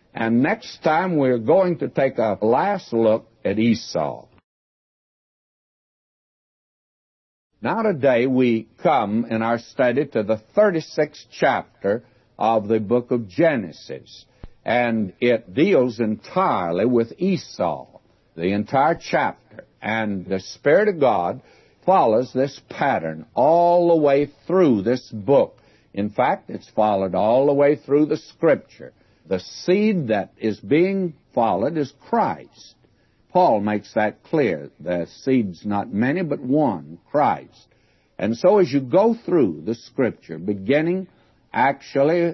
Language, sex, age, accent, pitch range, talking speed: English, male, 60-79, American, 110-140 Hz, 130 wpm